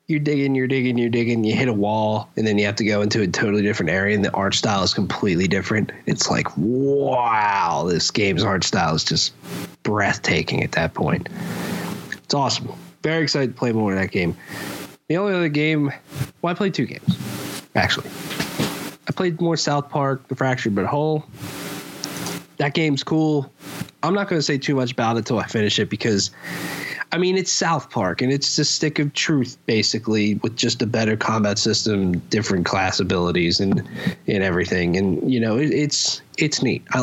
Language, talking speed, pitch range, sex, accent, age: English, 195 wpm, 110-145 Hz, male, American, 20-39